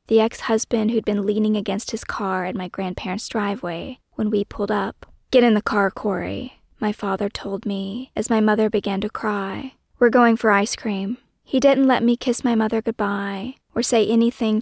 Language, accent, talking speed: English, American, 195 wpm